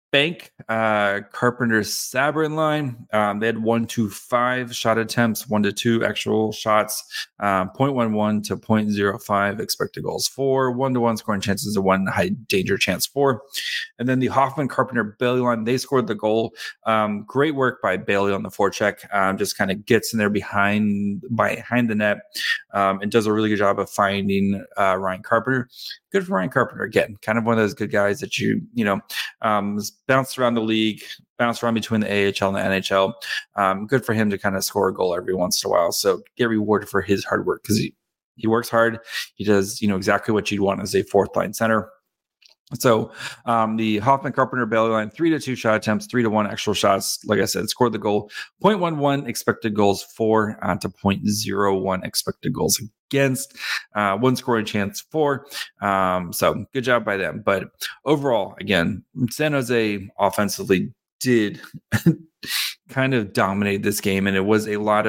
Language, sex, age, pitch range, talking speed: English, male, 20-39, 100-120 Hz, 195 wpm